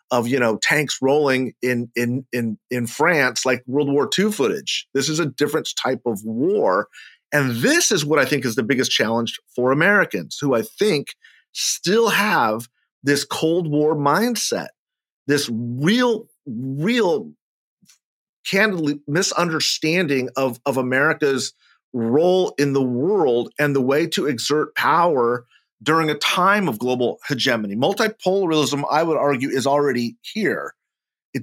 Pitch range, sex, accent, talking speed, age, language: 120-155 Hz, male, American, 145 wpm, 40-59, English